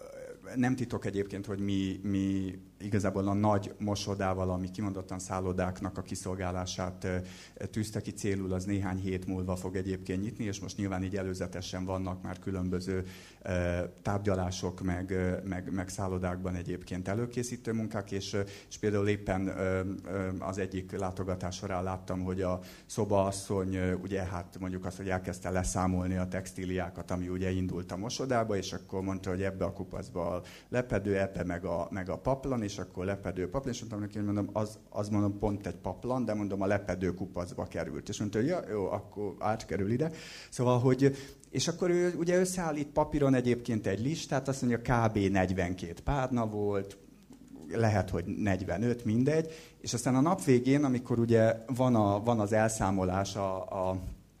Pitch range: 90-110 Hz